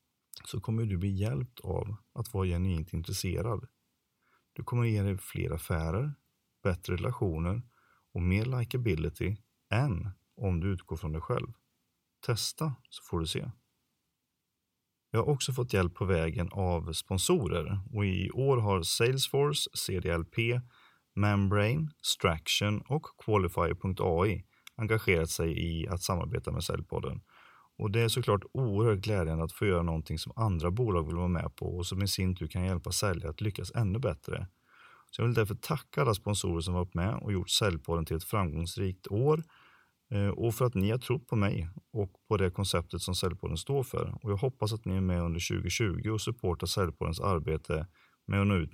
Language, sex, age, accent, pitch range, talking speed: Swedish, male, 30-49, native, 90-115 Hz, 170 wpm